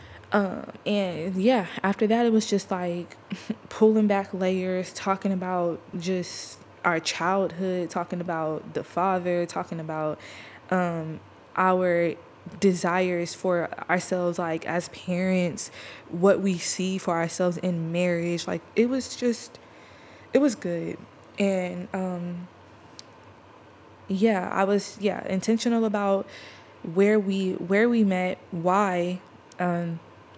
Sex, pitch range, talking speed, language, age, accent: female, 175-210 Hz, 120 wpm, English, 20-39, American